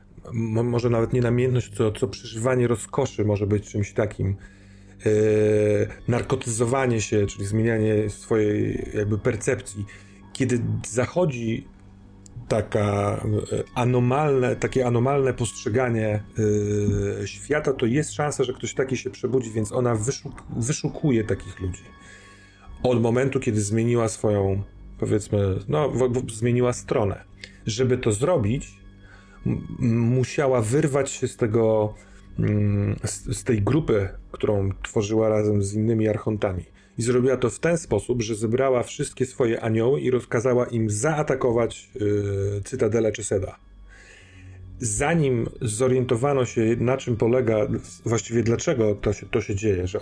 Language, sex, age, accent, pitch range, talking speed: Polish, male, 40-59, native, 100-125 Hz, 125 wpm